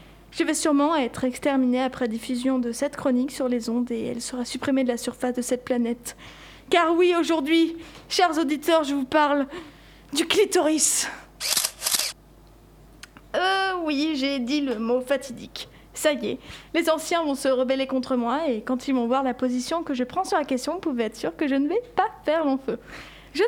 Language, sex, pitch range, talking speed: French, female, 250-305 Hz, 195 wpm